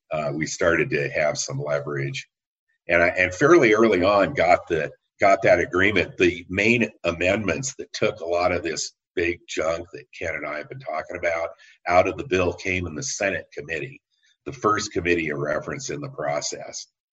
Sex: male